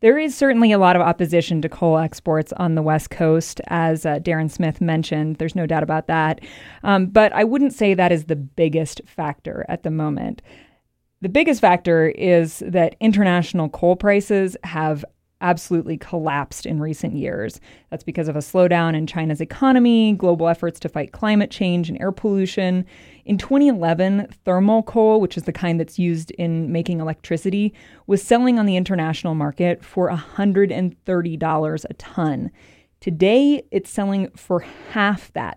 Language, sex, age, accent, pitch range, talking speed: English, female, 30-49, American, 160-200 Hz, 165 wpm